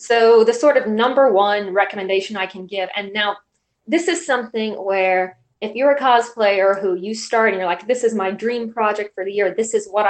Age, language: 20-39, English